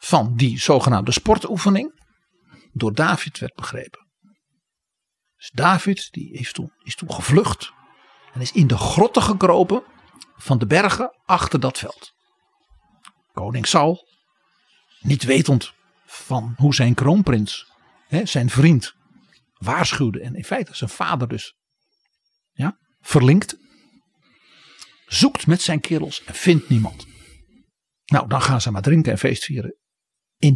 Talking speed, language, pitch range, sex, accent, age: 130 wpm, Dutch, 125-190 Hz, male, Dutch, 50-69